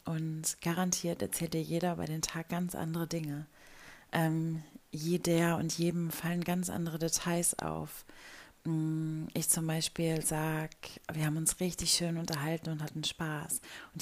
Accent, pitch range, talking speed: German, 160-180 Hz, 145 wpm